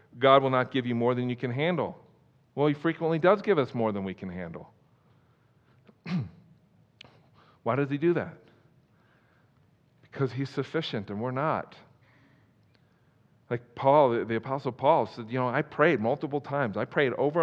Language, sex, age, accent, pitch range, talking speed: English, male, 50-69, American, 125-155 Hz, 165 wpm